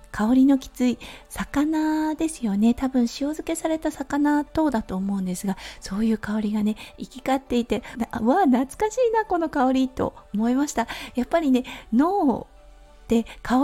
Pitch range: 205-280 Hz